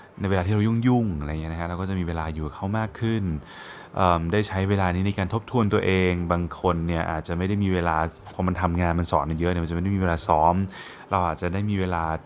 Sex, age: male, 20-39